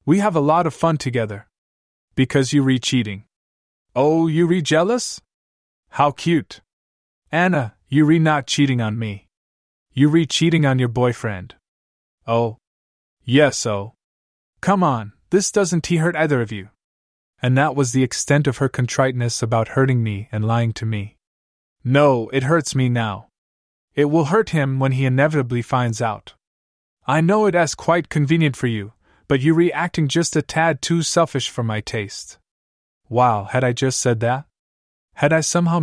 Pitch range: 105-150 Hz